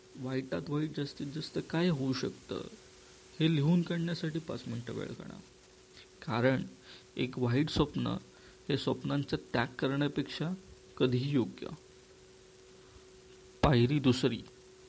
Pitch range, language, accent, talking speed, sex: 125-150 Hz, Marathi, native, 100 wpm, male